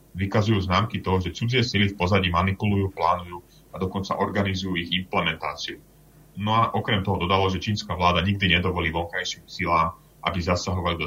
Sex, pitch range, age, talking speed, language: male, 80-100 Hz, 30-49, 165 wpm, Slovak